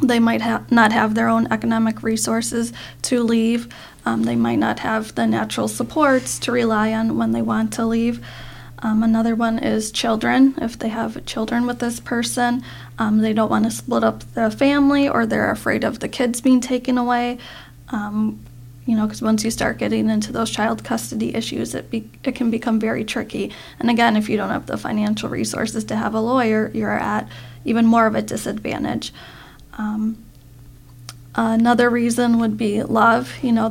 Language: English